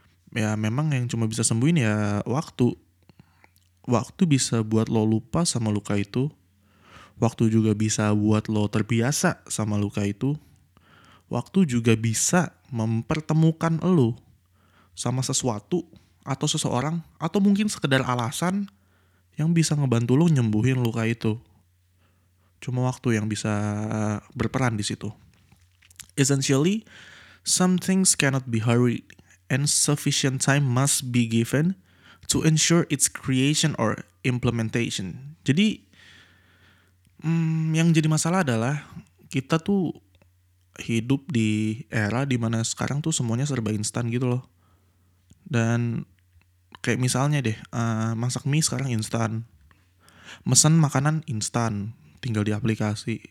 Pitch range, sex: 105-140 Hz, male